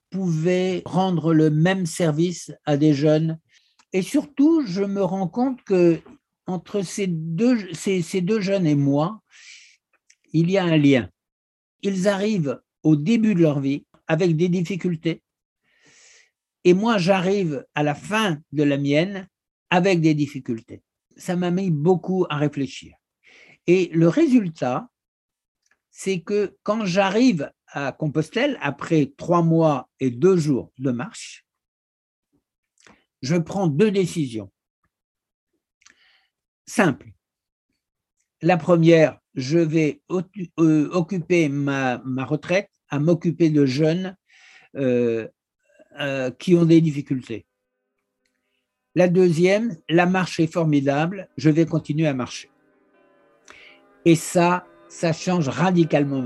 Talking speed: 120 wpm